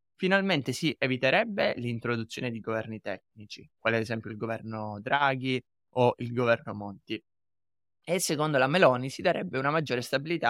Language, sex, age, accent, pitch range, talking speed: Italian, male, 20-39, native, 120-150 Hz, 150 wpm